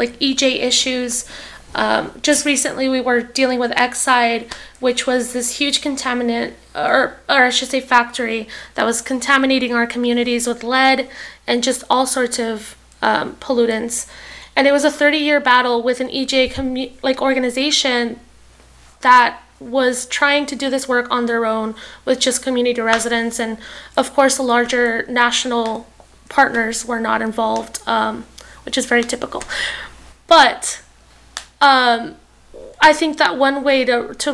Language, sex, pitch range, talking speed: English, female, 240-270 Hz, 150 wpm